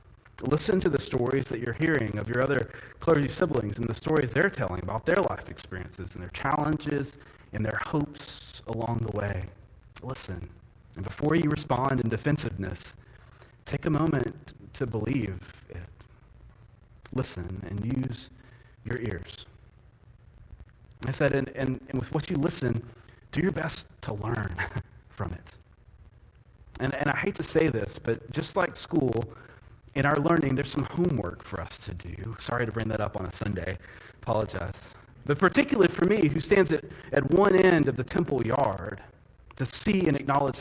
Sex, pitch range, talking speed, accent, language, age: male, 105-140 Hz, 165 wpm, American, English, 30-49